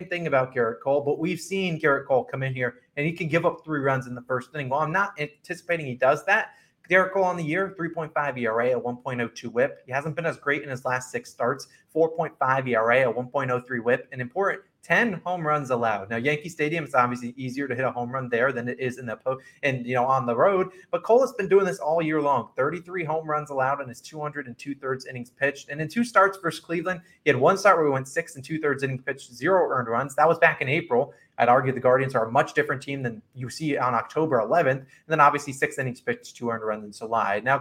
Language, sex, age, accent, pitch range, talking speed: English, male, 20-39, American, 125-165 Hz, 255 wpm